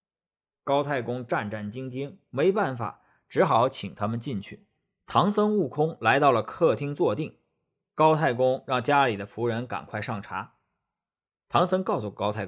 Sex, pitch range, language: male, 115-165 Hz, Chinese